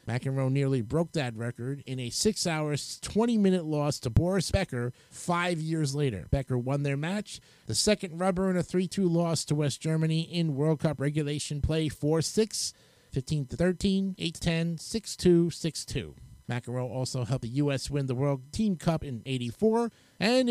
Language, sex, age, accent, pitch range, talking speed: English, male, 50-69, American, 135-175 Hz, 155 wpm